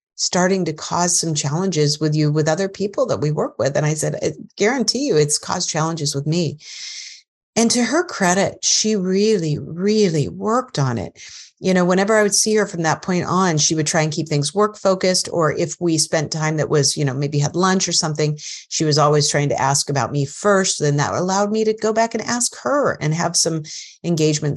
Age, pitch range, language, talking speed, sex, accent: 40-59, 150-200 Hz, English, 220 wpm, female, American